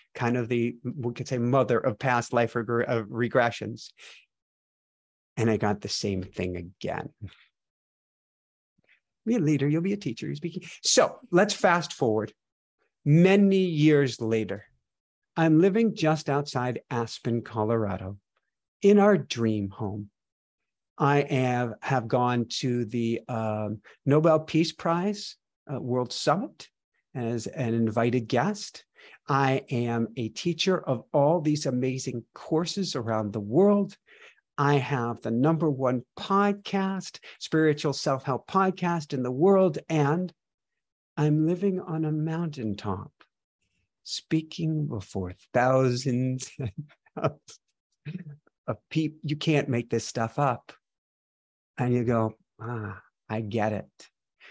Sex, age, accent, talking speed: male, 50-69, American, 120 wpm